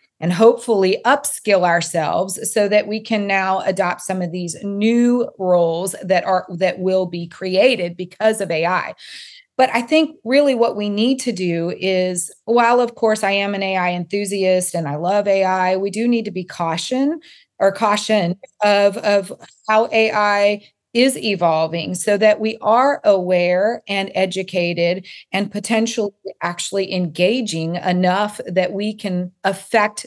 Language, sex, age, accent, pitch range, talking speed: English, female, 30-49, American, 180-220 Hz, 150 wpm